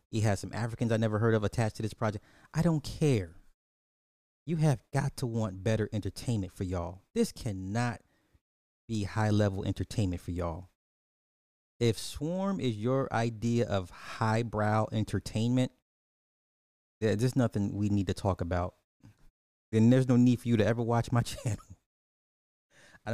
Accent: American